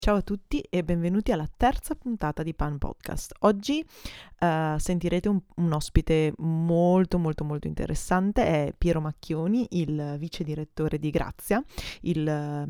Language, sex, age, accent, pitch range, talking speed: Italian, female, 20-39, native, 155-180 Hz, 145 wpm